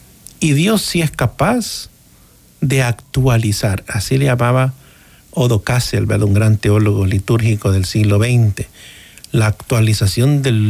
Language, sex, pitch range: Spanish, male, 110-150 Hz